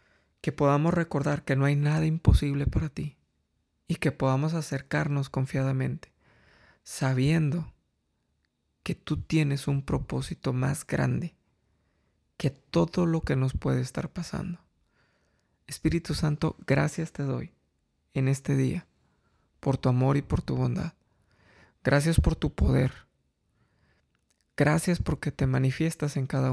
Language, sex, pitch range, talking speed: Spanish, male, 110-155 Hz, 125 wpm